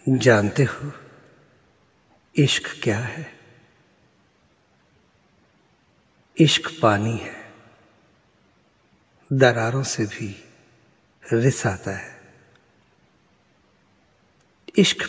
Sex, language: male, Hindi